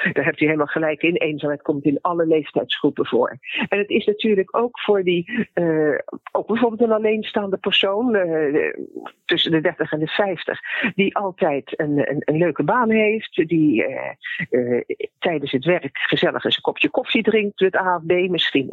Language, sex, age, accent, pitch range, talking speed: Dutch, female, 50-69, Dutch, 150-220 Hz, 180 wpm